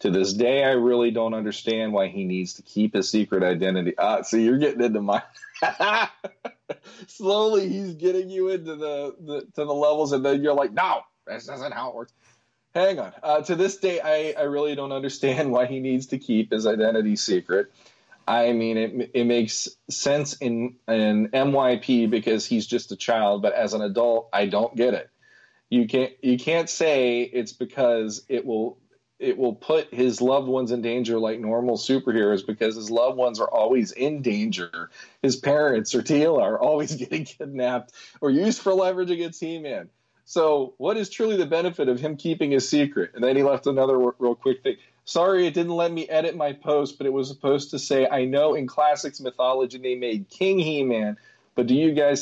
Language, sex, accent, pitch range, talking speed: English, male, American, 120-155 Hz, 200 wpm